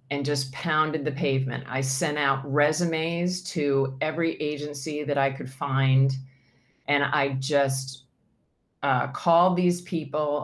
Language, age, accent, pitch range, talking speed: English, 40-59, American, 135-155 Hz, 130 wpm